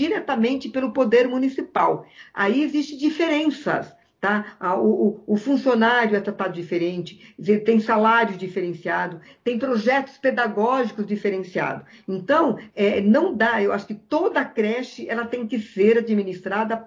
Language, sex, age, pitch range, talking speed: Portuguese, female, 50-69, 200-250 Hz, 130 wpm